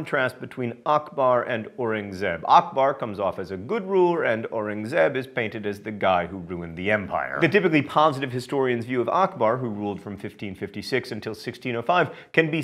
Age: 40-59